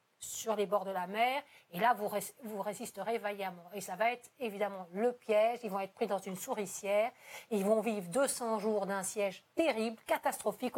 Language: French